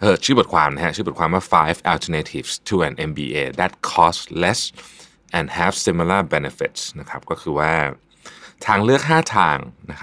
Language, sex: Thai, male